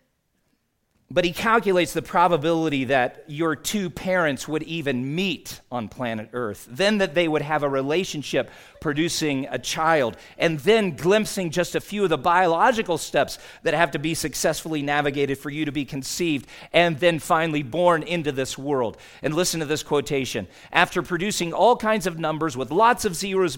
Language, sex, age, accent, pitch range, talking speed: English, male, 40-59, American, 125-170 Hz, 175 wpm